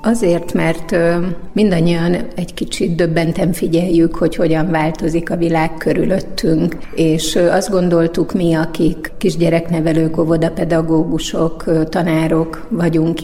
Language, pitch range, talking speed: Hungarian, 165-180 Hz, 100 wpm